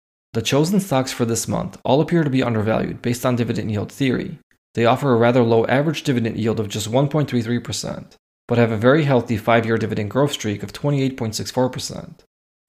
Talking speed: 185 wpm